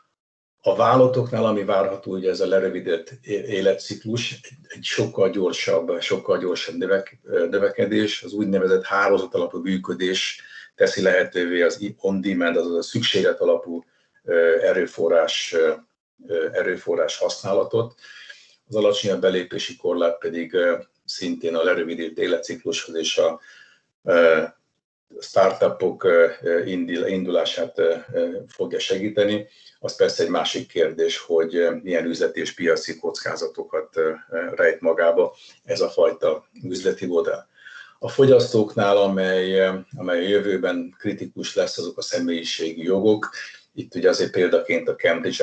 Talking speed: 105 wpm